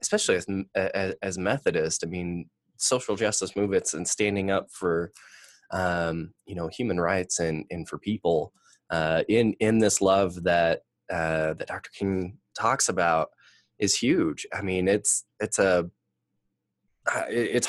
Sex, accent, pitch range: male, American, 85-100 Hz